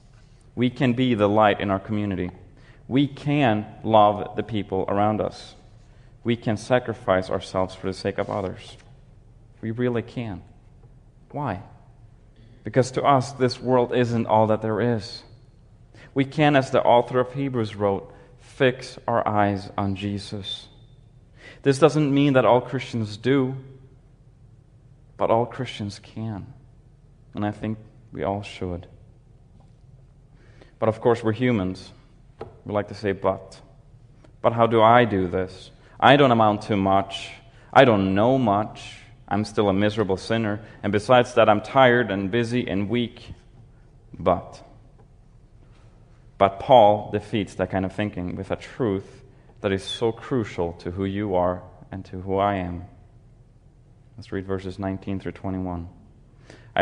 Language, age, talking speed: English, 30-49, 145 wpm